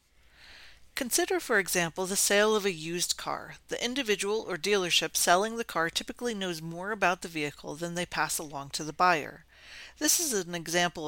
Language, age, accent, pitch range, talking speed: English, 40-59, American, 155-205 Hz, 180 wpm